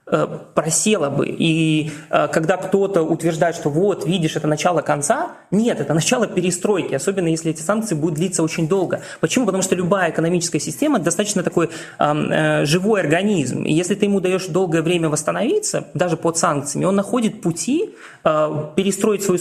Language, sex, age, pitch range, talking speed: Russian, male, 20-39, 150-195 Hz, 160 wpm